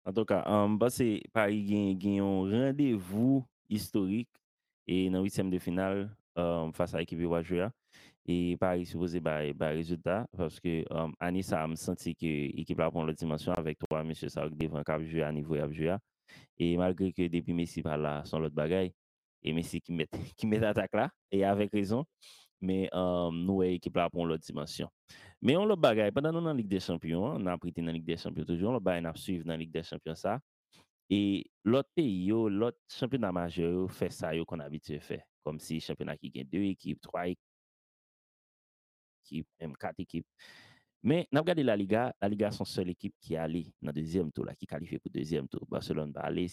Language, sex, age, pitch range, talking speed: French, male, 20-39, 80-100 Hz, 205 wpm